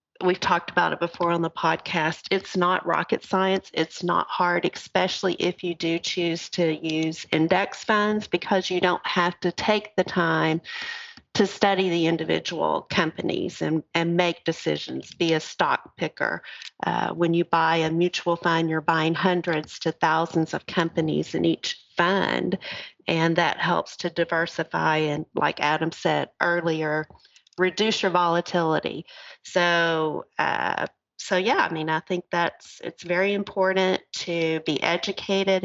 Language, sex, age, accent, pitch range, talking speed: English, female, 40-59, American, 160-185 Hz, 150 wpm